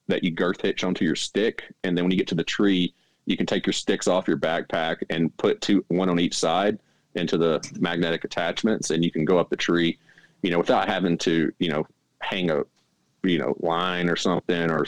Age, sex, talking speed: 30-49, male, 225 wpm